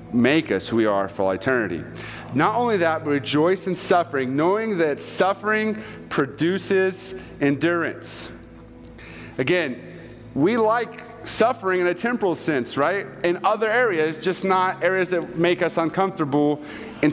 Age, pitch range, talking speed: 40-59, 145-190 Hz, 135 wpm